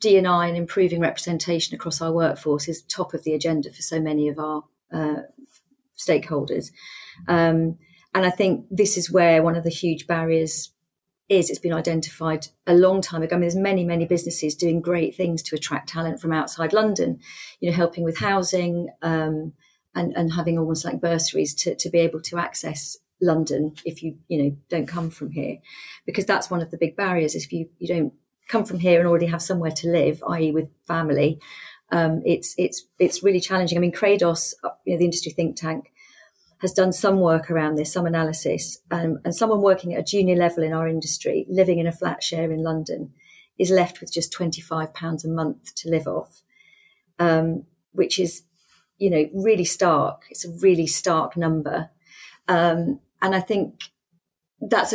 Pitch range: 160-180 Hz